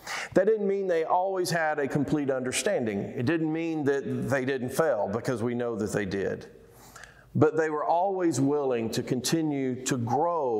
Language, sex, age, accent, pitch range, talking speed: English, male, 50-69, American, 130-160 Hz, 175 wpm